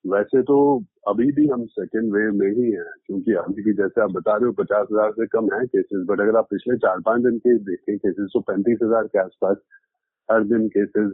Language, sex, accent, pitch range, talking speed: Hindi, male, native, 105-140 Hz, 215 wpm